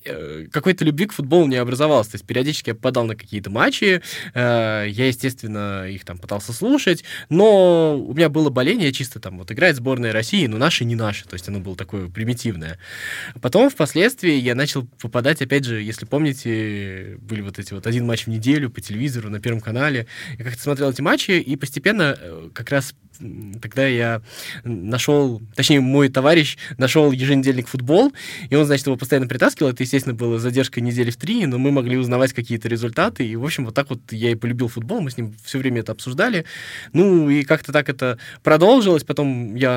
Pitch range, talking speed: 115-145 Hz, 190 wpm